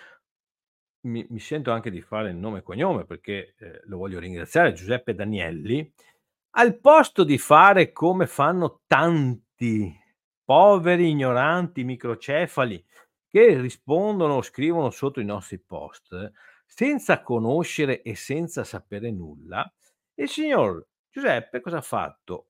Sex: male